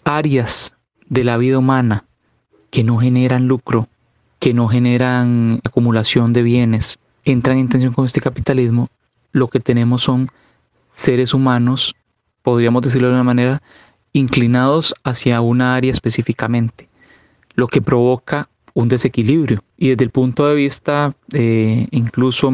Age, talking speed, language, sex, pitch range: 30-49, 135 wpm, Spanish, male, 115-130 Hz